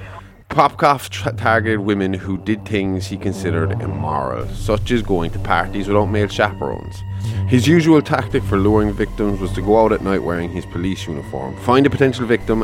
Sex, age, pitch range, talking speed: male, 20-39, 95-110 Hz, 175 wpm